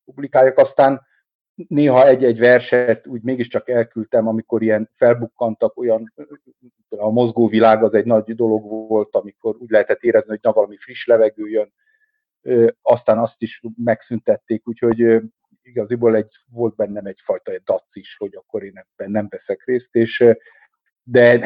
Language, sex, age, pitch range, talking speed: Hungarian, male, 50-69, 110-135 Hz, 130 wpm